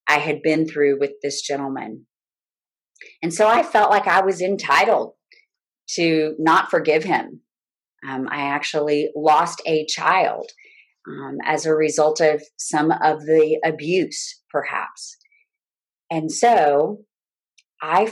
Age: 30-49